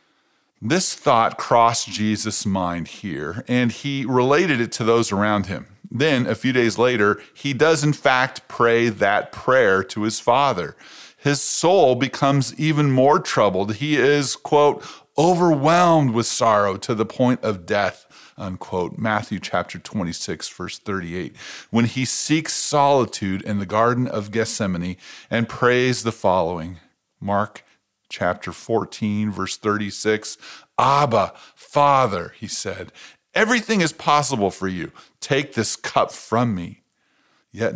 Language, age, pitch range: English, 40-59, 105-140 Hz